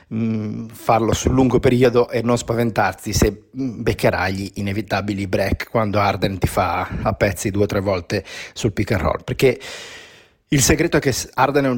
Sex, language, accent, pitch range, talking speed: male, Italian, native, 105-130 Hz, 175 wpm